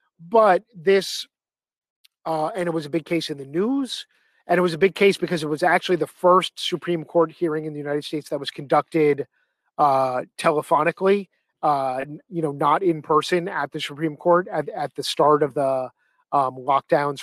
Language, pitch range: English, 150-175 Hz